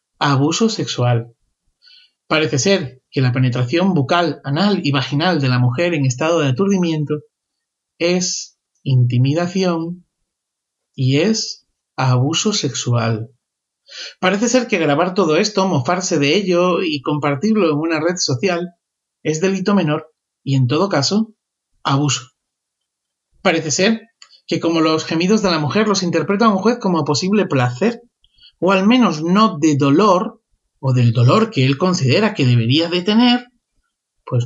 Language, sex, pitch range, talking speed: Spanish, male, 140-210 Hz, 140 wpm